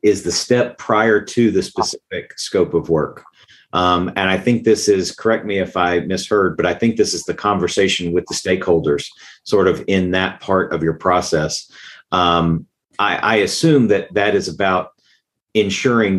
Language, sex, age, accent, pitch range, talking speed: English, male, 40-59, American, 85-110 Hz, 180 wpm